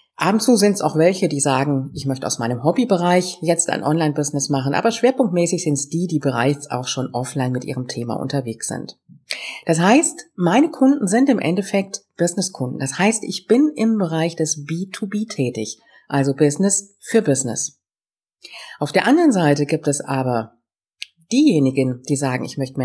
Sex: female